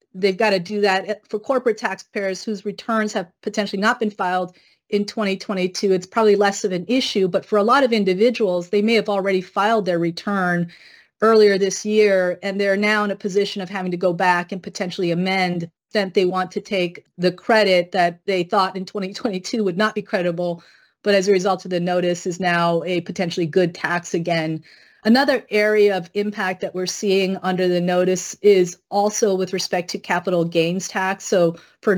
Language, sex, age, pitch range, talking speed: English, female, 30-49, 180-210 Hz, 195 wpm